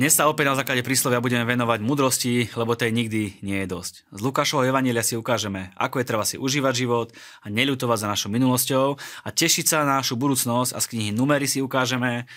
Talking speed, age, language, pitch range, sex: 210 wpm, 20-39, Slovak, 100-130 Hz, male